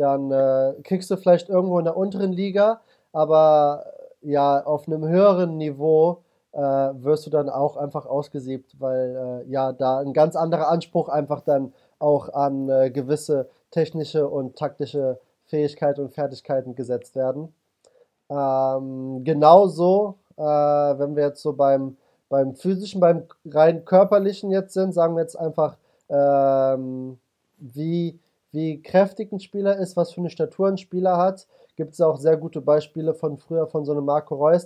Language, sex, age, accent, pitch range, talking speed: German, male, 20-39, German, 145-175 Hz, 160 wpm